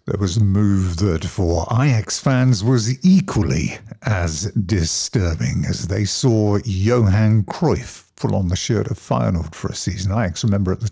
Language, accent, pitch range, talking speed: English, British, 90-115 Hz, 165 wpm